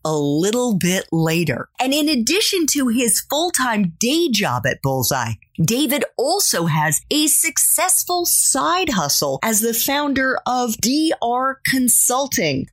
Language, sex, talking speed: English, female, 125 wpm